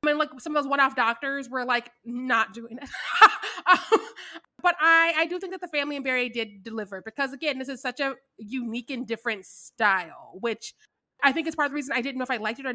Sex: female